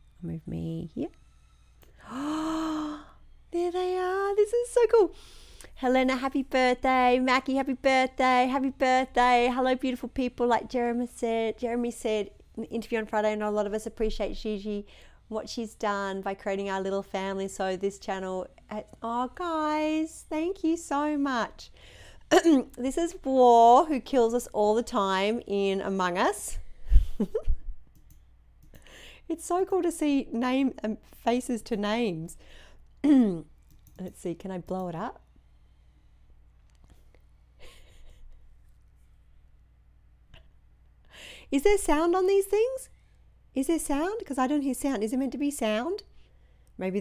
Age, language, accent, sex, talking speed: 40-59, English, Australian, female, 140 wpm